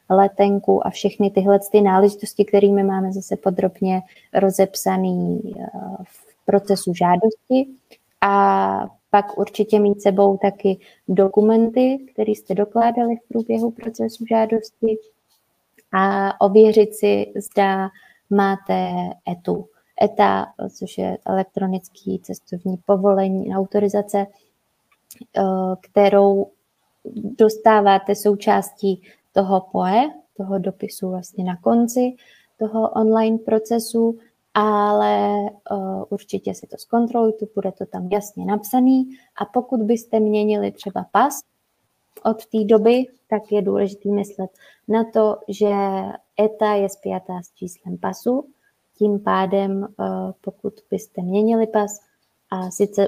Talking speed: 110 wpm